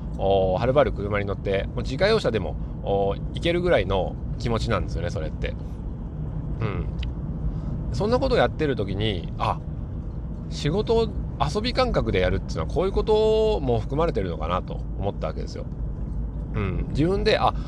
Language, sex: Japanese, male